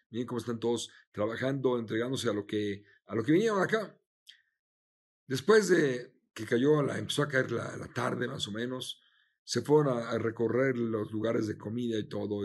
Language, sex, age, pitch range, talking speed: Spanish, male, 50-69, 115-155 Hz, 190 wpm